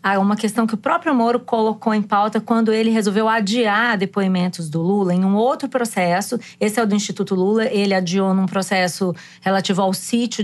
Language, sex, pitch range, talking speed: Portuguese, female, 185-235 Hz, 190 wpm